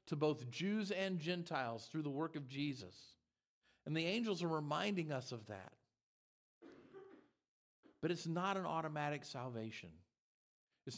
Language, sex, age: English, male, 50-69